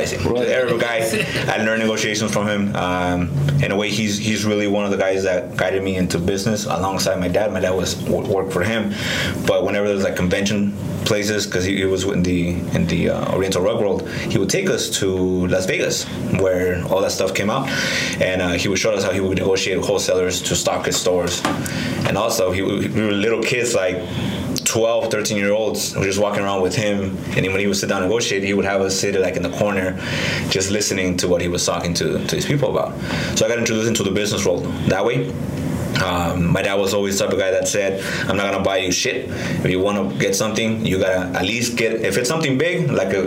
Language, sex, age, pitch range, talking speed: English, male, 20-39, 90-105 Hz, 230 wpm